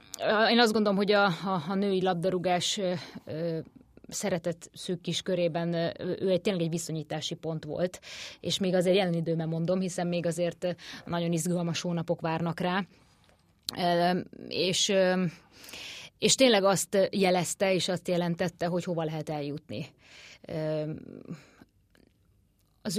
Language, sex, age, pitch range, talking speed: Hungarian, female, 20-39, 165-190 Hz, 130 wpm